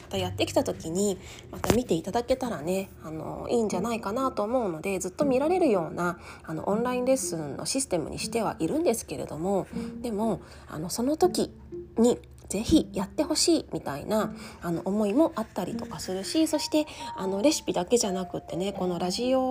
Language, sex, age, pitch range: Japanese, female, 20-39, 185-285 Hz